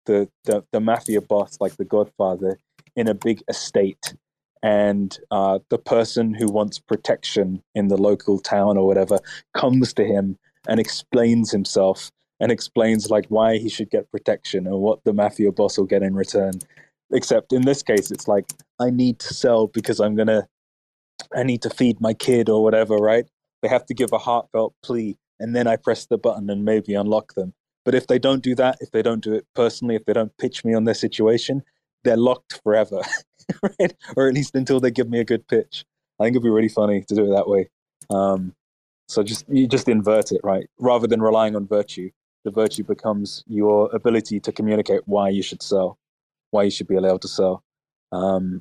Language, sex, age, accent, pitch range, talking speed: English, male, 20-39, British, 100-115 Hz, 200 wpm